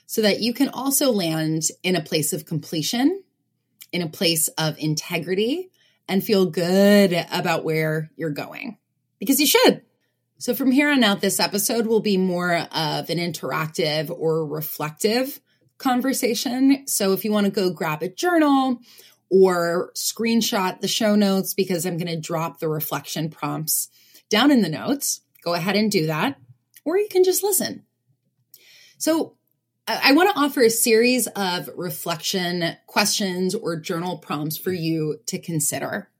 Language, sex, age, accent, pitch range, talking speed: English, female, 20-39, American, 160-230 Hz, 155 wpm